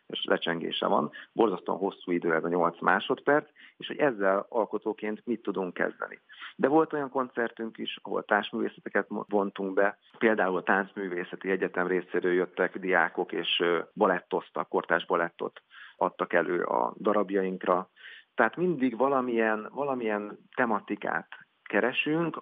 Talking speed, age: 125 wpm, 50-69